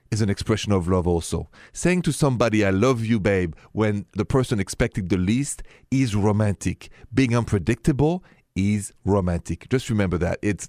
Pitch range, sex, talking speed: 100-140 Hz, male, 165 wpm